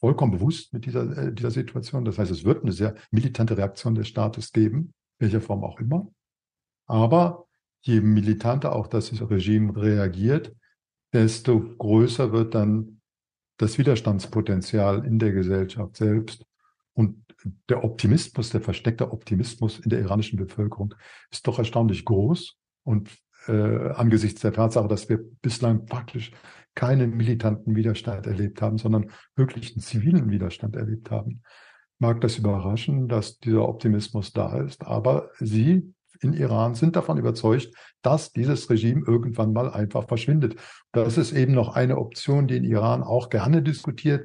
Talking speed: 145 wpm